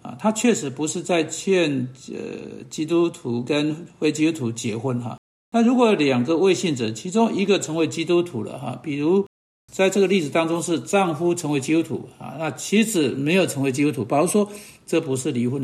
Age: 60-79